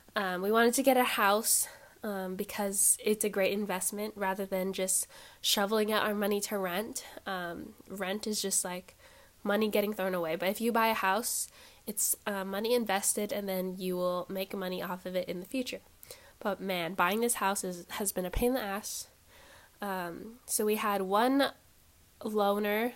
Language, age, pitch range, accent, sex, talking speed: English, 10-29, 195-245 Hz, American, female, 185 wpm